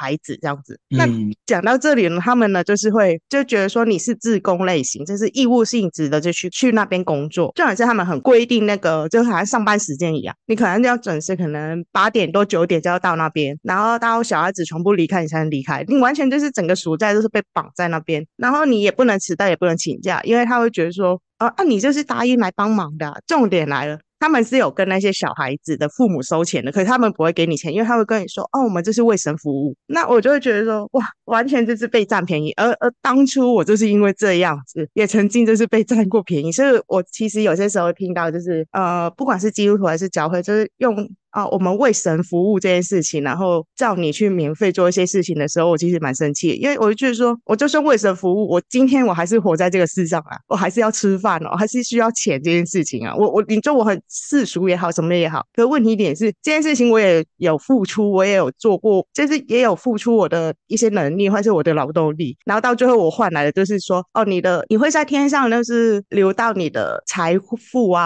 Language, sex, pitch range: Chinese, female, 170-230 Hz